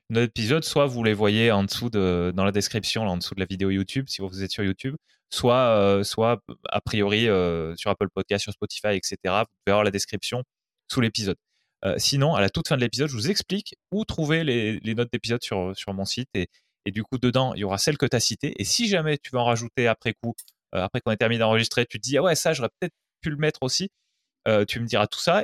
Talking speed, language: 255 wpm, French